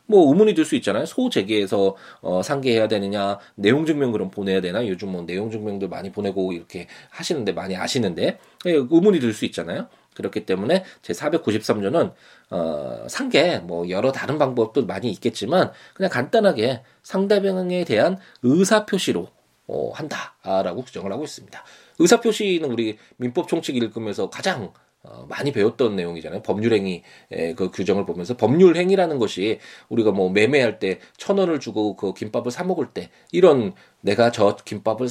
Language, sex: Korean, male